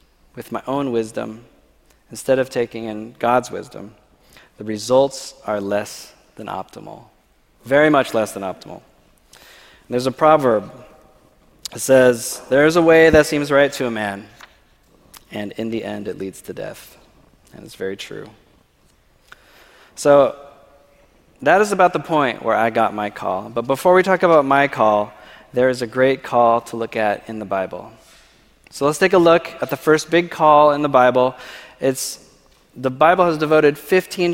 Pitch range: 115-150 Hz